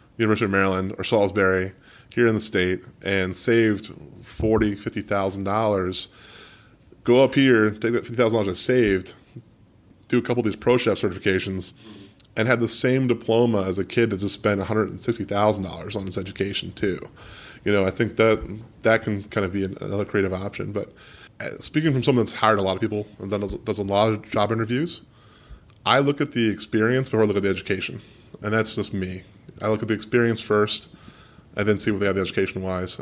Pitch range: 95-115 Hz